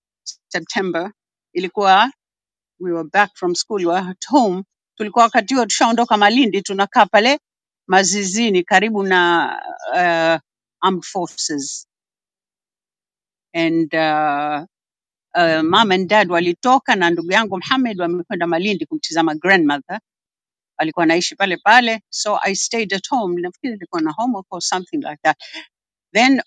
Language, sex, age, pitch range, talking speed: Swahili, female, 60-79, 185-255 Hz, 115 wpm